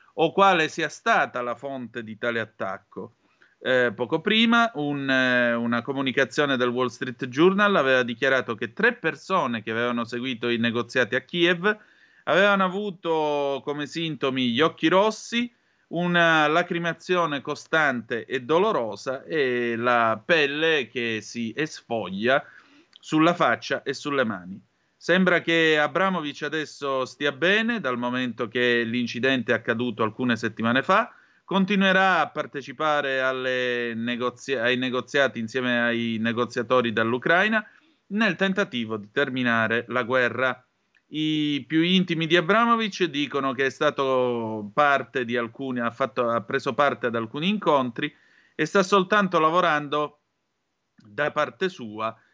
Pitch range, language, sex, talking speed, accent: 120-165 Hz, Italian, male, 130 wpm, native